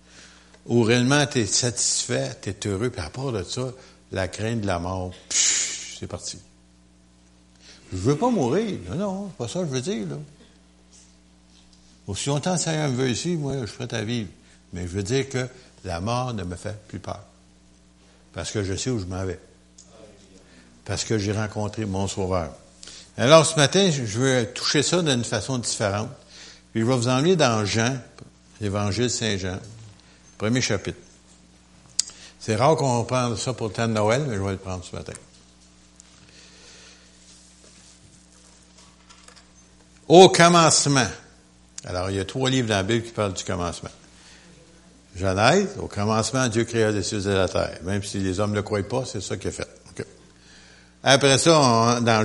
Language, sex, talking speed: French, male, 180 wpm